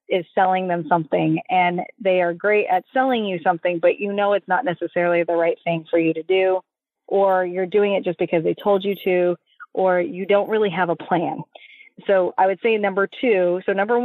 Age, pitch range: 30-49, 180-215 Hz